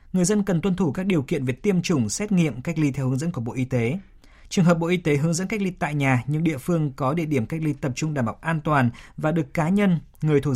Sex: male